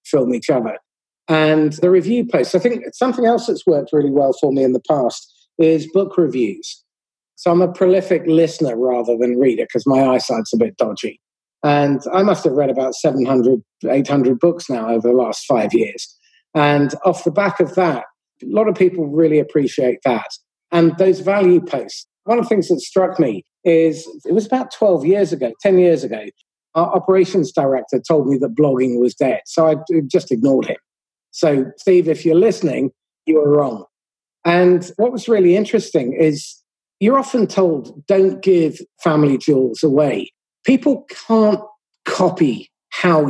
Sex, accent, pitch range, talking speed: male, British, 145-190 Hz, 175 wpm